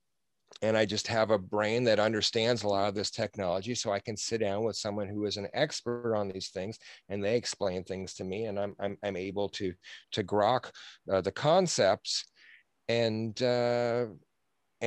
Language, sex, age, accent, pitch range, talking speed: English, male, 40-59, American, 100-120 Hz, 185 wpm